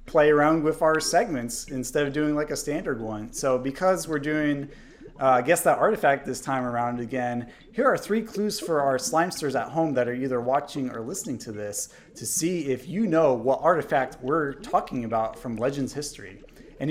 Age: 30-49